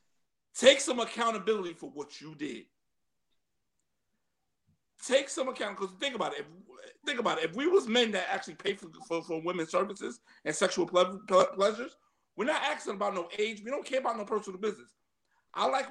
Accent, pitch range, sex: American, 175-245 Hz, male